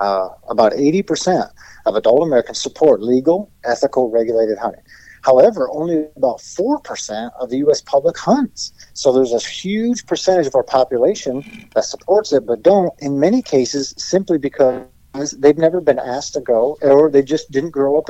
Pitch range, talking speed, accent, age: 115-155 Hz, 165 wpm, American, 50-69